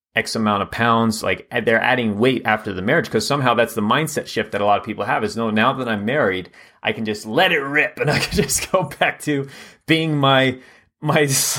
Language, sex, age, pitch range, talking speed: English, male, 30-49, 115-155 Hz, 235 wpm